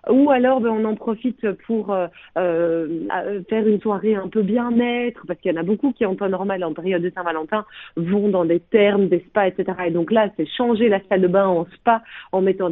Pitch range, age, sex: 185-240 Hz, 30-49, female